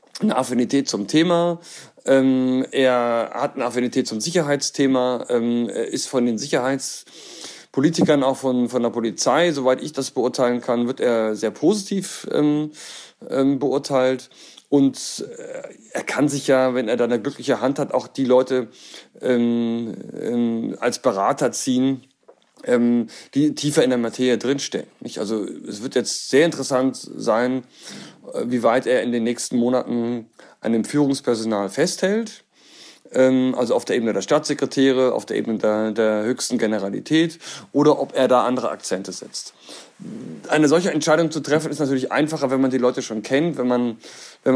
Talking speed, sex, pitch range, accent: 145 wpm, male, 120-145 Hz, German